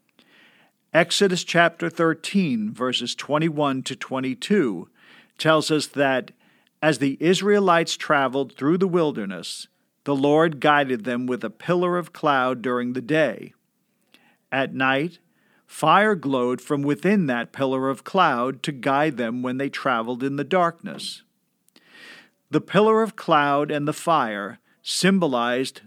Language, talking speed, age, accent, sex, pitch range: English, 130 wpm, 50-69, American, male, 135-185 Hz